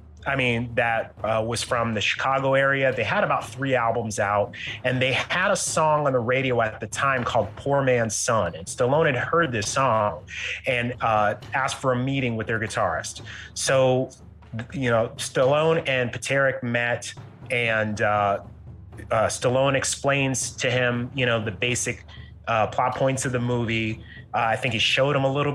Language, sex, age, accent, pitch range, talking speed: English, male, 30-49, American, 115-135 Hz, 180 wpm